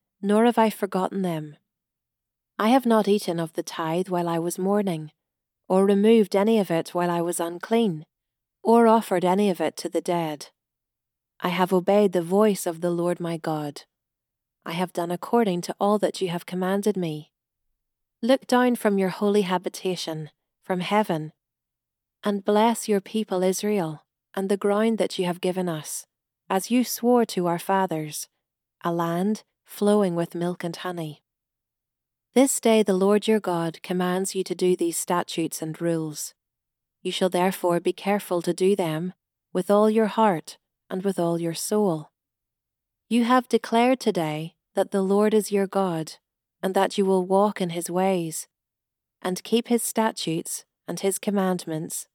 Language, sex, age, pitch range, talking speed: English, female, 40-59, 170-205 Hz, 165 wpm